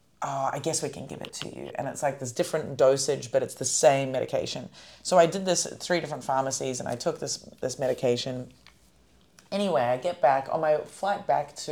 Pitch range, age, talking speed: 135-170 Hz, 30-49, 220 wpm